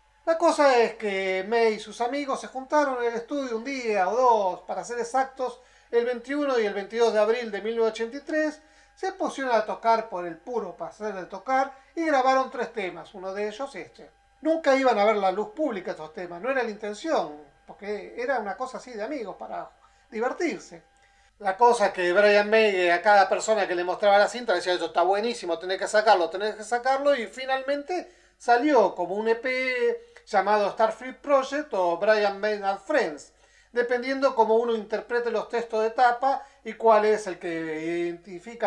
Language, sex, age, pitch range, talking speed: Spanish, male, 40-59, 200-265 Hz, 190 wpm